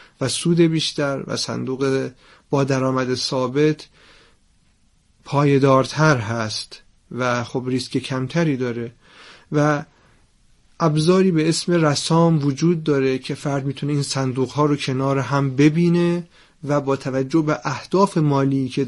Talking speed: 125 wpm